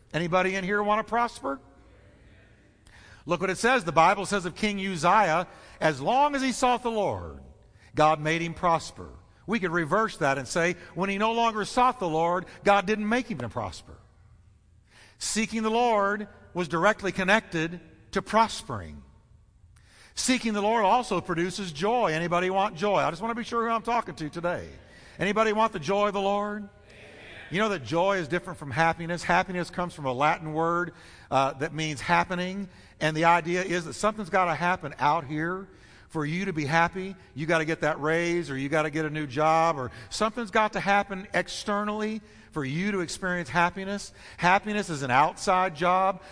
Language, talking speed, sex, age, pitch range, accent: English, 190 wpm, male, 50-69, 150-205 Hz, American